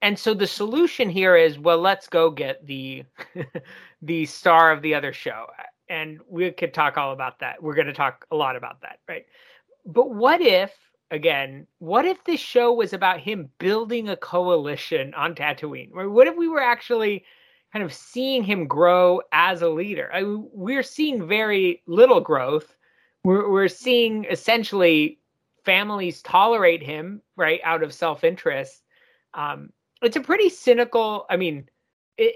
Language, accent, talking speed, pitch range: English, American, 160 wpm, 160-245 Hz